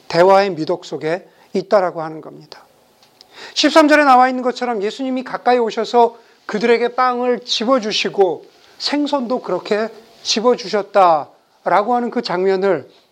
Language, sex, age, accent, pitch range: Korean, male, 40-59, native, 200-255 Hz